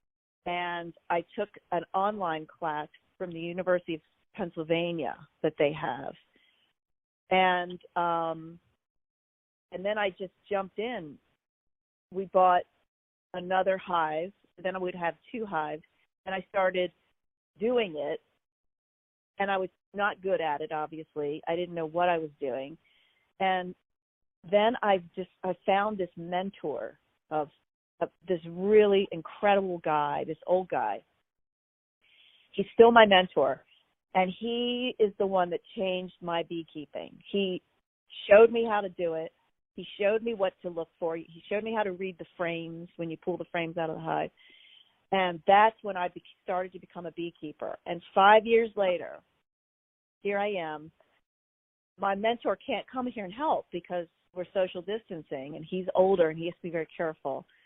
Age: 40-59